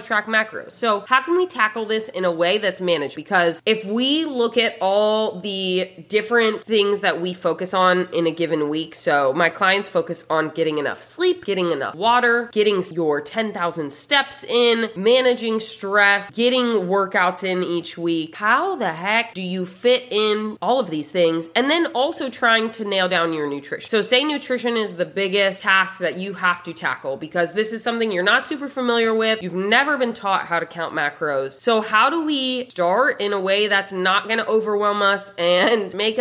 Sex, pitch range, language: female, 185-245 Hz, English